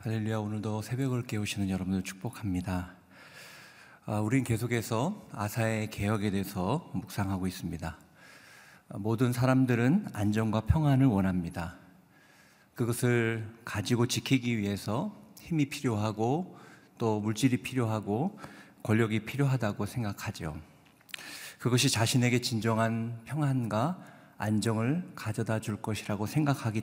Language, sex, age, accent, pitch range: Korean, male, 50-69, native, 105-140 Hz